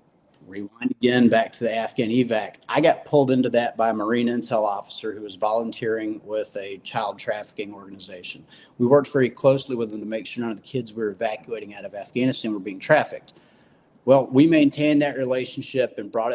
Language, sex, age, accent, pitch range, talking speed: English, male, 40-59, American, 110-140 Hz, 200 wpm